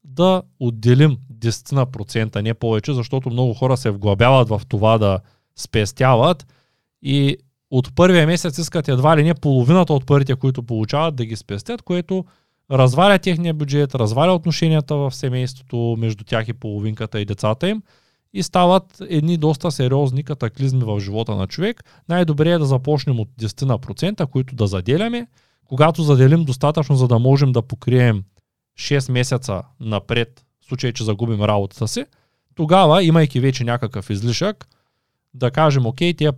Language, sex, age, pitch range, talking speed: Bulgarian, male, 20-39, 115-155 Hz, 150 wpm